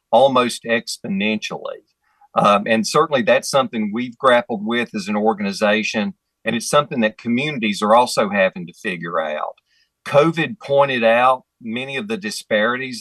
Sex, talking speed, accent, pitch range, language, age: male, 145 wpm, American, 110-180 Hz, English, 50-69